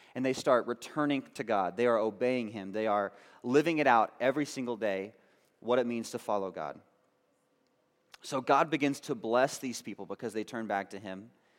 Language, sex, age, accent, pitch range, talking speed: English, male, 30-49, American, 105-130 Hz, 190 wpm